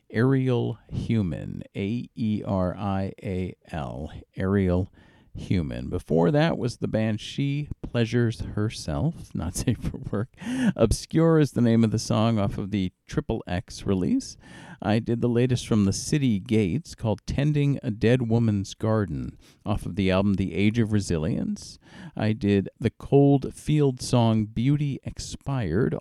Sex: male